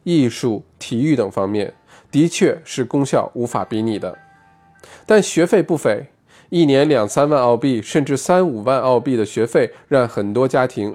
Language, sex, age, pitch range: Chinese, male, 20-39, 115-155 Hz